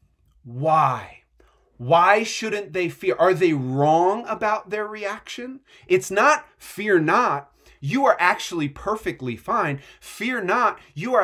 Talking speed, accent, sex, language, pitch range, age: 130 wpm, American, male, English, 100-160 Hz, 30-49